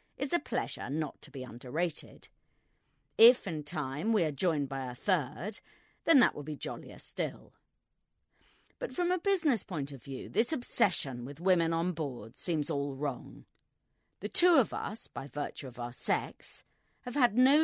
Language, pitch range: English, 140-215 Hz